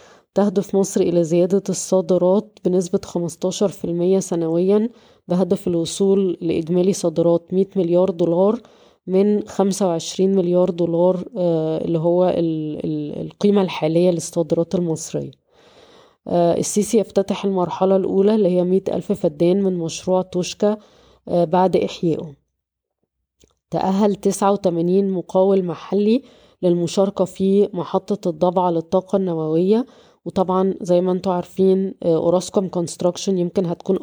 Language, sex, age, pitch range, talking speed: Arabic, female, 20-39, 175-195 Hz, 110 wpm